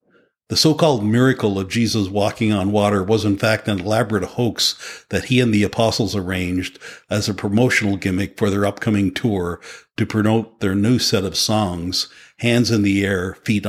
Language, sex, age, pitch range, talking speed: English, male, 60-79, 100-115 Hz, 175 wpm